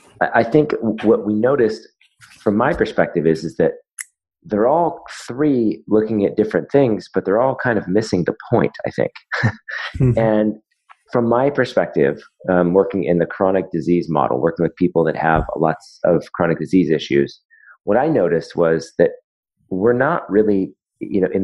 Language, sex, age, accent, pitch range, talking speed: English, male, 30-49, American, 85-115 Hz, 170 wpm